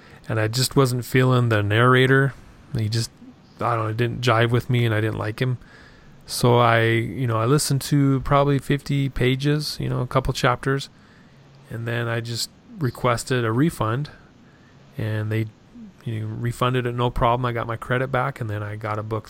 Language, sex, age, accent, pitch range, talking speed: English, male, 30-49, American, 110-130 Hz, 195 wpm